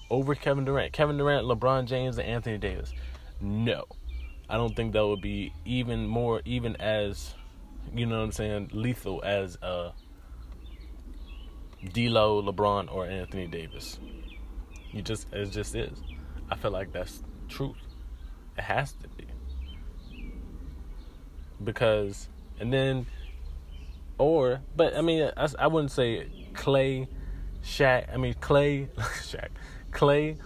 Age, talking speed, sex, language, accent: 20-39, 125 wpm, male, English, American